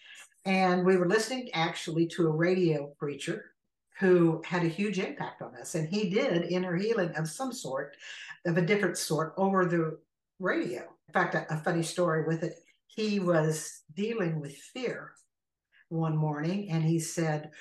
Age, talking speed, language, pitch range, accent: 60-79, 165 wpm, English, 160-200 Hz, American